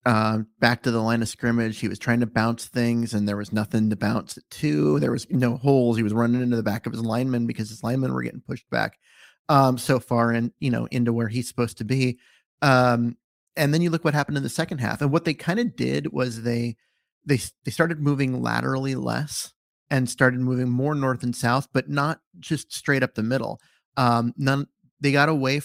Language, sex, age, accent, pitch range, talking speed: English, male, 30-49, American, 115-135 Hz, 225 wpm